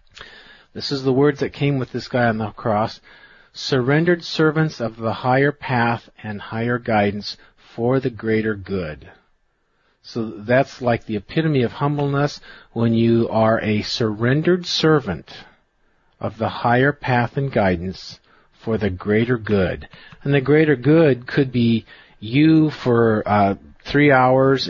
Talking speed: 145 wpm